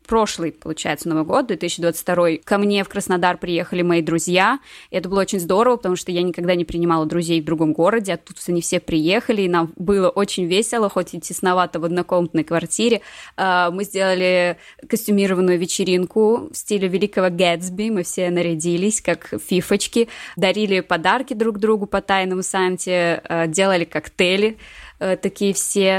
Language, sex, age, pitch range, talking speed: Russian, female, 20-39, 180-210 Hz, 150 wpm